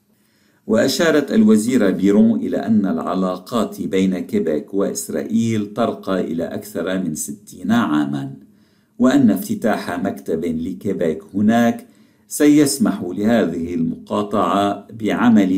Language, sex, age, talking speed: Arabic, male, 50-69, 90 wpm